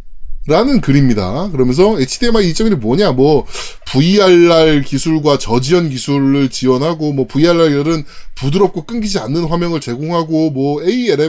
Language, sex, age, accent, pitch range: Korean, male, 20-39, native, 135-225 Hz